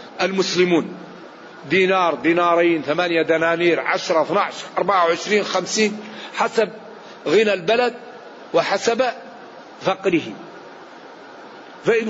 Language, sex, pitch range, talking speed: Arabic, male, 180-230 Hz, 85 wpm